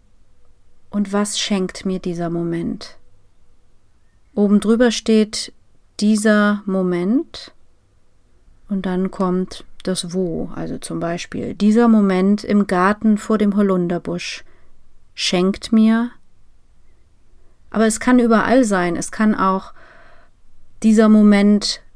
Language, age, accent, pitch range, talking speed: German, 30-49, German, 175-215 Hz, 105 wpm